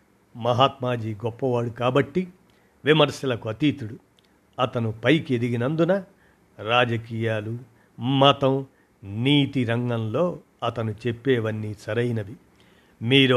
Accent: native